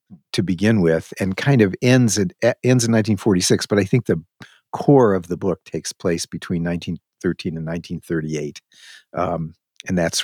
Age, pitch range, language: 50-69, 90-120 Hz, English